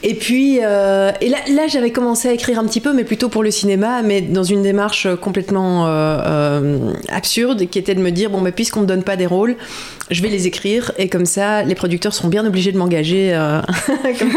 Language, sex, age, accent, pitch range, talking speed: French, female, 30-49, French, 180-225 Hz, 225 wpm